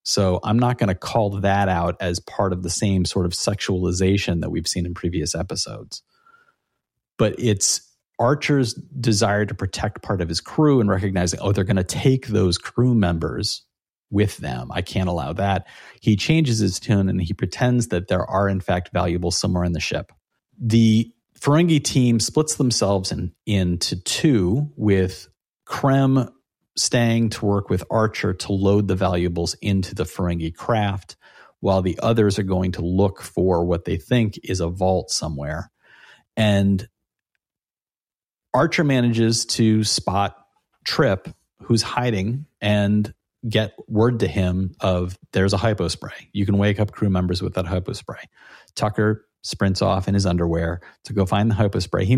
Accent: American